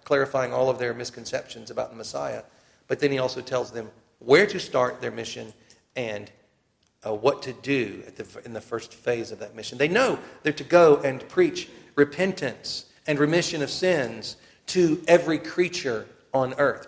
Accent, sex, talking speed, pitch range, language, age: American, male, 180 wpm, 130-165 Hz, English, 40-59